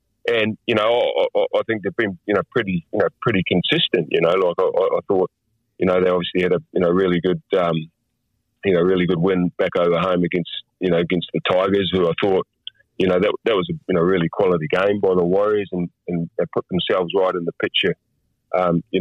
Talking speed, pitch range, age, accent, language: 220 wpm, 85-100 Hz, 30-49, Australian, English